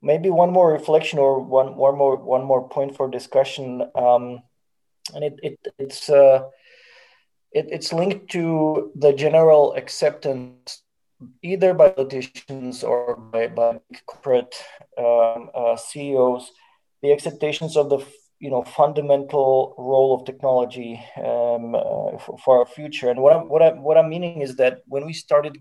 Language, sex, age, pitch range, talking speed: English, male, 20-39, 130-160 Hz, 155 wpm